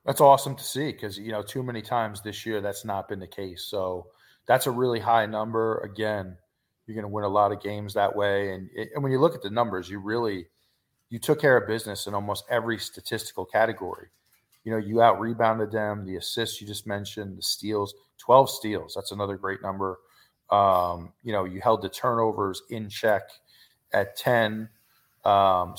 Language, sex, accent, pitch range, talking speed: English, male, American, 100-115 Hz, 200 wpm